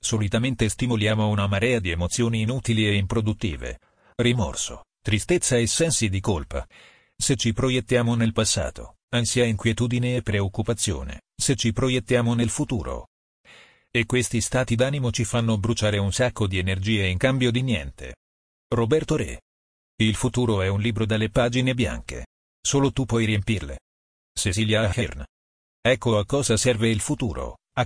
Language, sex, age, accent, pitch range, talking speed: Italian, male, 40-59, native, 100-120 Hz, 145 wpm